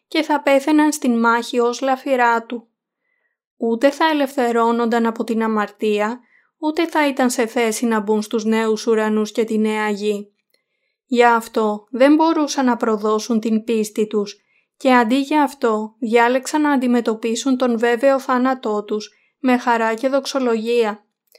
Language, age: Greek, 20-39